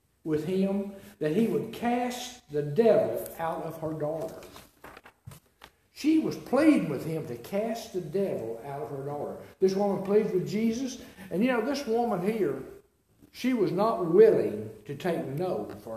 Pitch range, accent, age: 170-235 Hz, American, 60-79